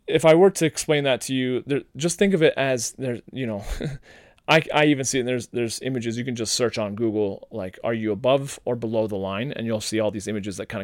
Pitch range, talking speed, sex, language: 110-140 Hz, 265 wpm, male, English